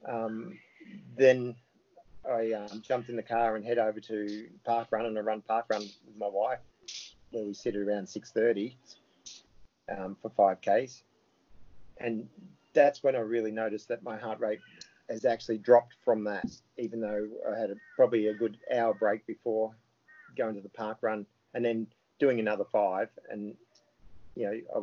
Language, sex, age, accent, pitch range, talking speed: English, male, 40-59, Australian, 105-120 Hz, 175 wpm